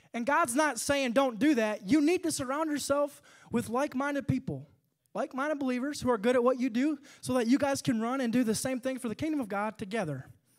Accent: American